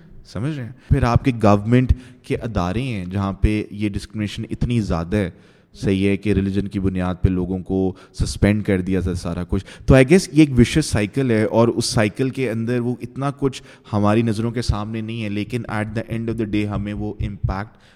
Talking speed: 210 wpm